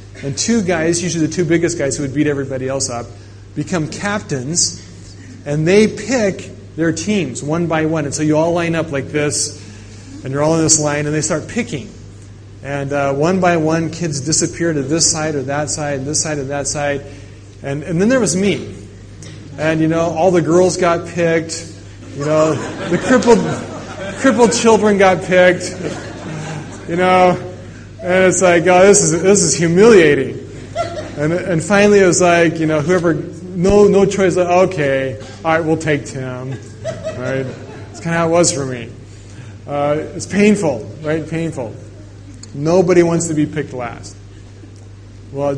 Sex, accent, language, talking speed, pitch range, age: male, American, English, 175 wpm, 105-170 Hz, 30-49